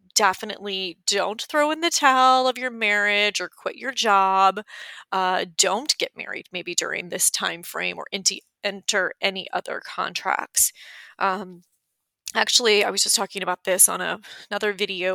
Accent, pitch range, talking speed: American, 185-215 Hz, 150 wpm